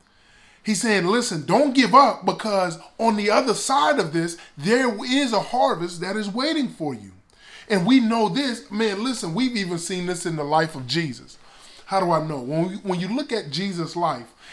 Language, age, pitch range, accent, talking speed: English, 20-39, 155-215 Hz, American, 200 wpm